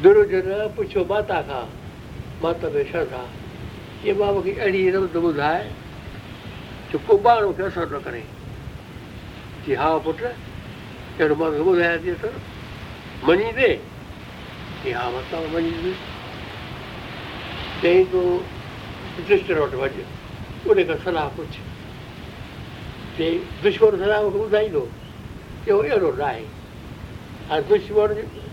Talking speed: 60 wpm